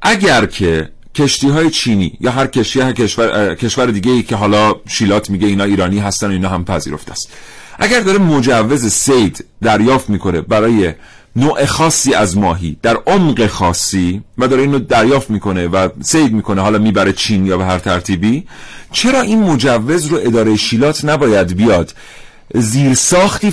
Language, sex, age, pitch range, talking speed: Persian, male, 40-59, 105-155 Hz, 155 wpm